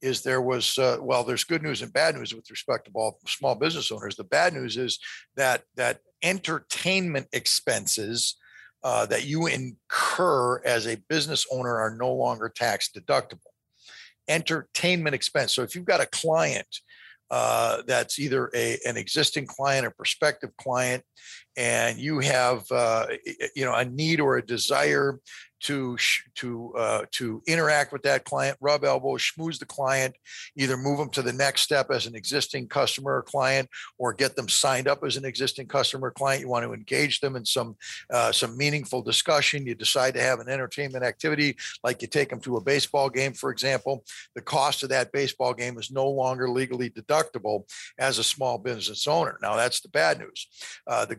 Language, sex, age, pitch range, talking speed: English, male, 50-69, 125-145 Hz, 185 wpm